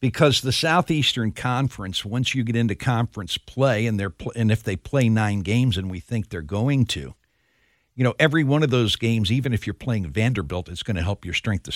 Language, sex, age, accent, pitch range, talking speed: English, male, 60-79, American, 110-145 Hz, 225 wpm